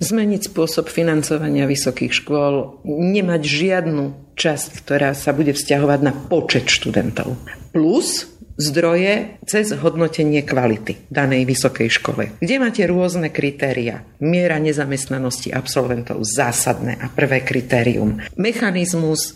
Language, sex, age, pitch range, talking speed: Slovak, female, 50-69, 140-185 Hz, 110 wpm